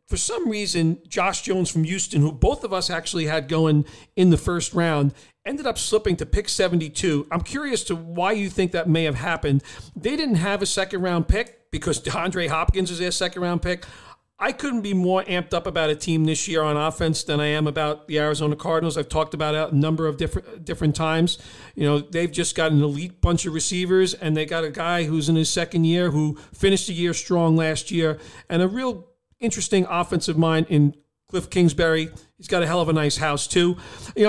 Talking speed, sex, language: 220 wpm, male, English